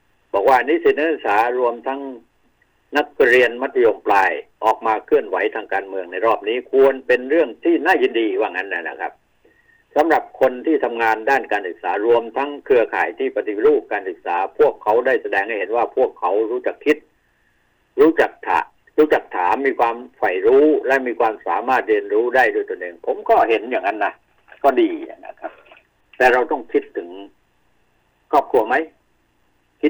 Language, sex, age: Thai, male, 60-79